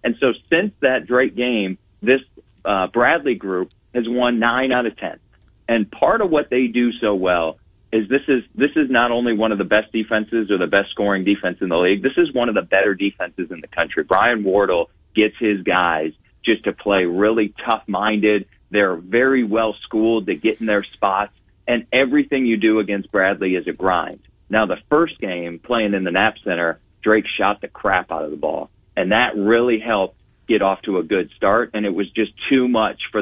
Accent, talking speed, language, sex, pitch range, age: American, 210 wpm, English, male, 100-120 Hz, 40-59